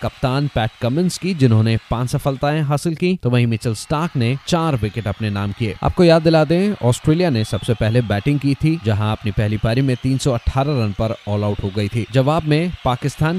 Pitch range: 110-145 Hz